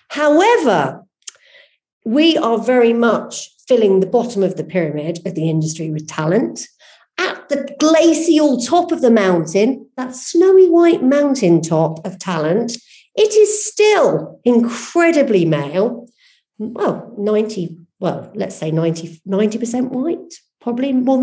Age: 50-69